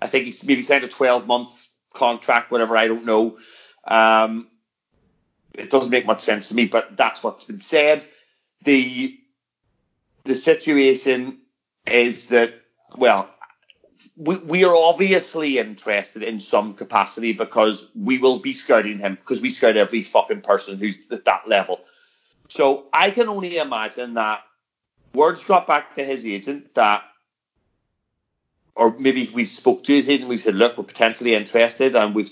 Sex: male